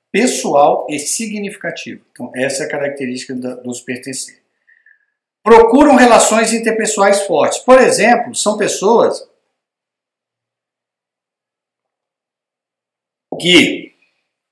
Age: 60-79